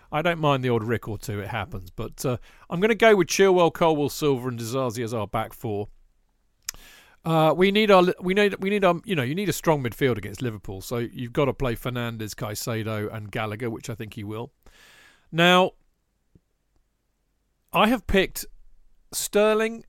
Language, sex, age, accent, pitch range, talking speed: English, male, 40-59, British, 115-180 Hz, 190 wpm